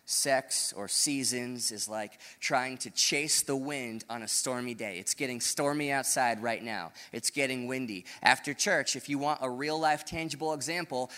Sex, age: male, 20-39